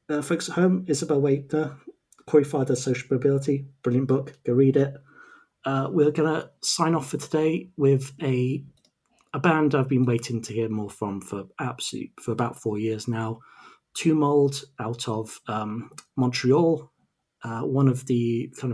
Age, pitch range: 30-49, 115-150 Hz